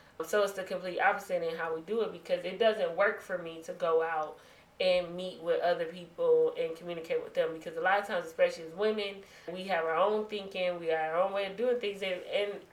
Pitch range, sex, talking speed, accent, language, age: 170-240 Hz, female, 240 wpm, American, English, 20-39